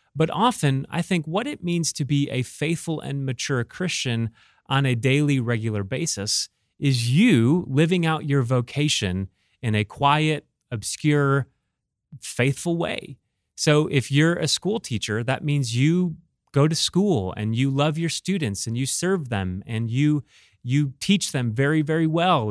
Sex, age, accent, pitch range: male, 30-49, American, 125-165 Hz